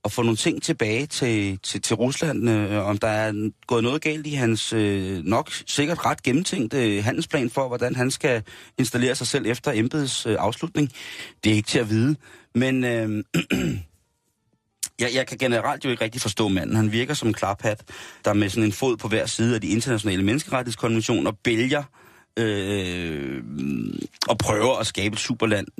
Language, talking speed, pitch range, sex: Danish, 185 wpm, 105-125 Hz, male